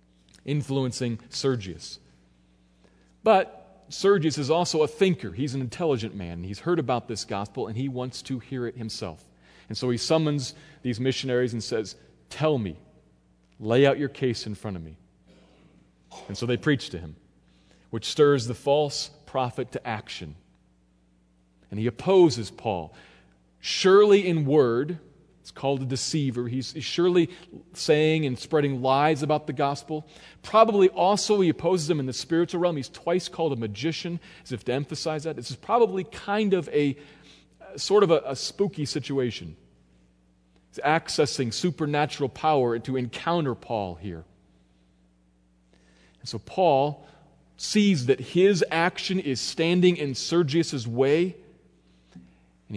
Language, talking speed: English, 145 wpm